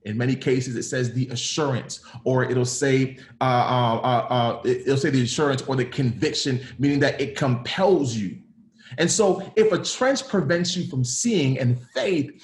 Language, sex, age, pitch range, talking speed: English, male, 30-49, 135-190 Hz, 180 wpm